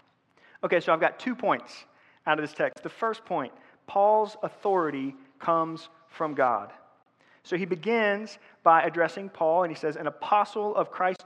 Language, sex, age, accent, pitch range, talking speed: English, male, 30-49, American, 150-200 Hz, 165 wpm